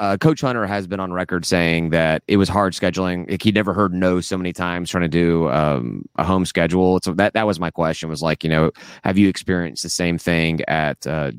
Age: 30-49